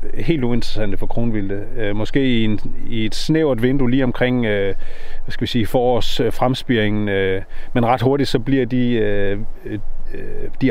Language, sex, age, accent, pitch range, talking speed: Danish, male, 30-49, native, 100-125 Hz, 160 wpm